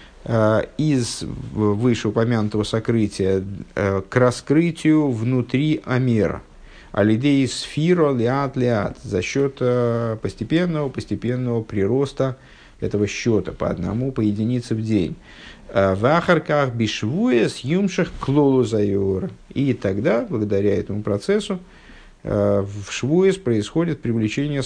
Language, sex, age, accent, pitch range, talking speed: Russian, male, 50-69, native, 100-140 Hz, 85 wpm